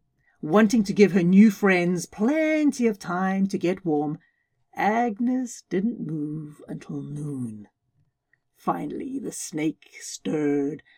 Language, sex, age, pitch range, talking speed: English, female, 50-69, 155-240 Hz, 115 wpm